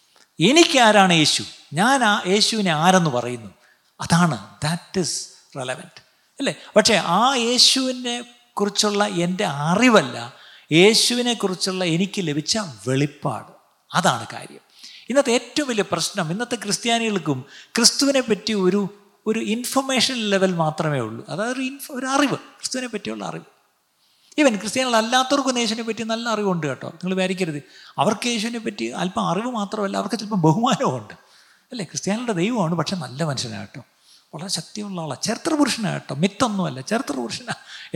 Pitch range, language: 160-230 Hz, Malayalam